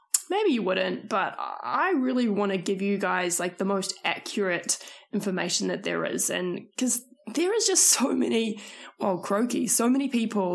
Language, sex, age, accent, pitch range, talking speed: English, female, 20-39, Australian, 185-260 Hz, 175 wpm